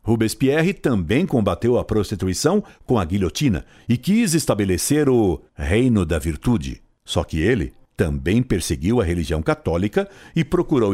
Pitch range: 85-130 Hz